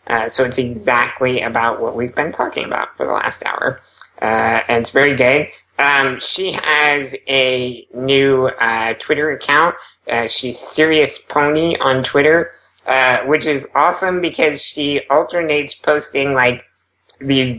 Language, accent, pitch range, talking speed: English, American, 125-150 Hz, 145 wpm